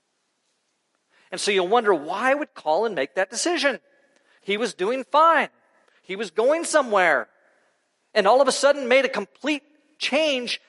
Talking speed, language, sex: 150 wpm, English, male